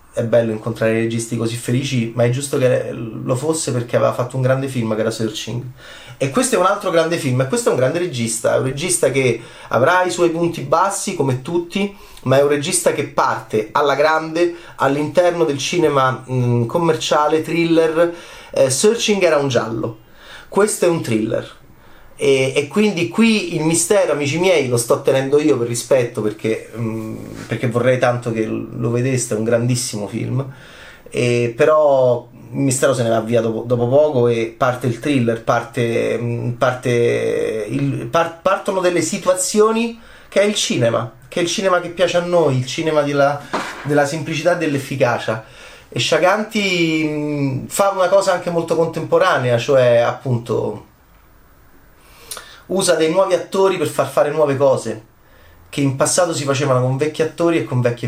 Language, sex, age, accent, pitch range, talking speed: Italian, male, 30-49, native, 120-170 Hz, 170 wpm